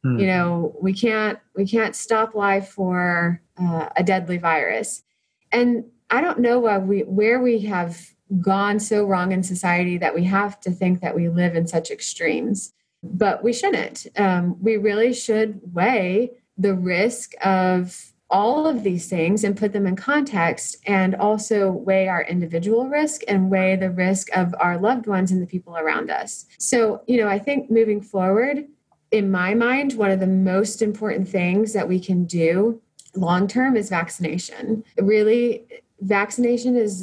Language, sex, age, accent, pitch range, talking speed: English, female, 30-49, American, 175-215 Hz, 165 wpm